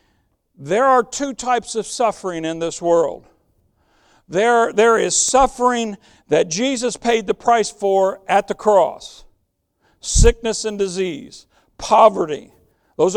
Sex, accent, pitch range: male, American, 205-310 Hz